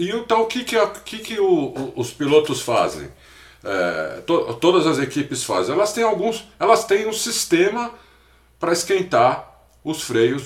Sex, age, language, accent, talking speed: male, 50-69, Portuguese, Brazilian, 160 wpm